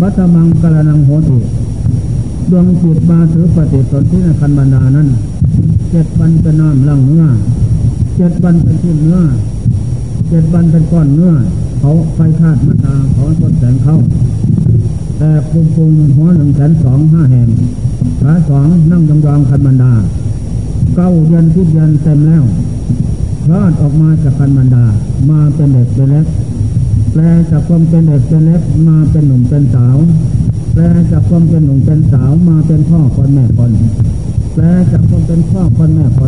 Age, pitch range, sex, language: 60-79, 125-160 Hz, male, Thai